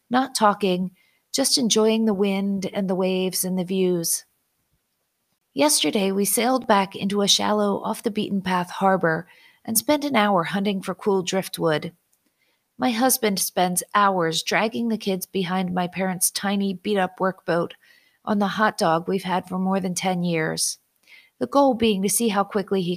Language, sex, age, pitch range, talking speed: English, female, 40-59, 180-215 Hz, 165 wpm